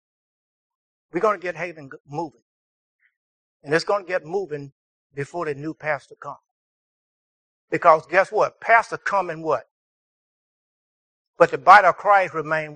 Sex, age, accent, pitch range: male, 60-79, American, 165-270 Hz